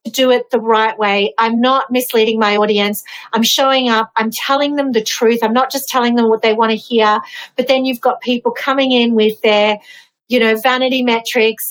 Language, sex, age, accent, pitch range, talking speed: English, female, 40-59, Australian, 220-265 Hz, 210 wpm